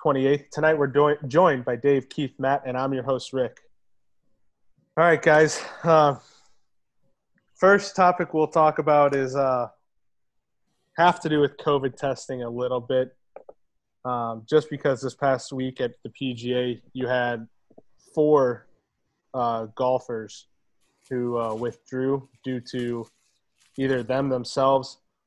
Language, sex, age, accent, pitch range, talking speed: English, male, 20-39, American, 120-140 Hz, 135 wpm